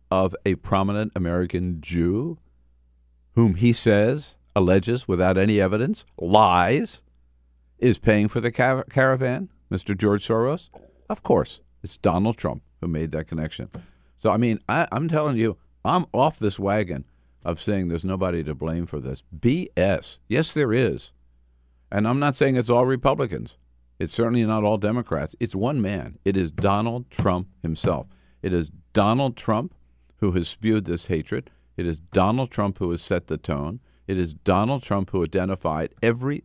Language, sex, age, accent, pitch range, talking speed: English, male, 60-79, American, 75-105 Hz, 160 wpm